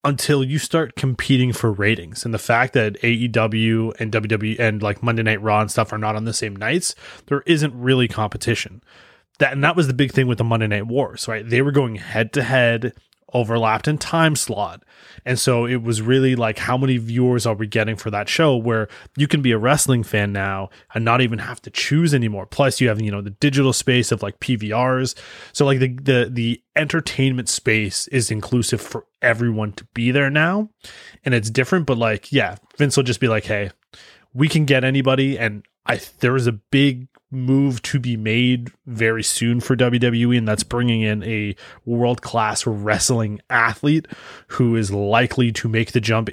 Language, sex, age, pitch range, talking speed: English, male, 20-39, 110-130 Hz, 200 wpm